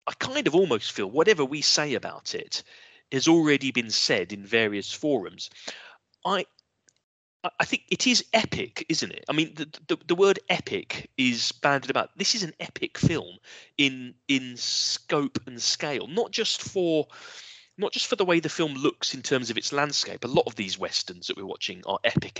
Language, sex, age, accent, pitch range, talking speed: English, male, 30-49, British, 120-175 Hz, 190 wpm